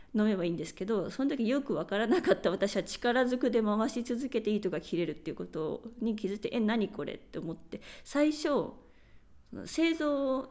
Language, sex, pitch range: Japanese, female, 205-270 Hz